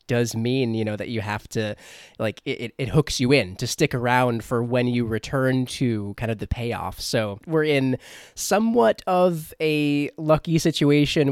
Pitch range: 120-150 Hz